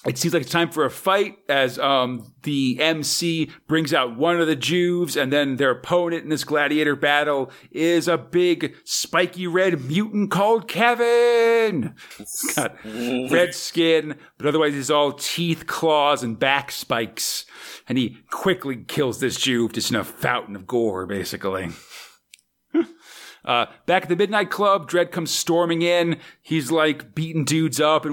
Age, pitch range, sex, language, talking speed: 40-59, 130-165 Hz, male, English, 160 wpm